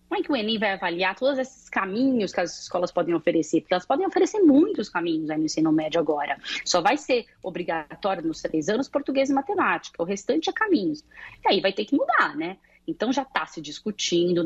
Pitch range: 170-225 Hz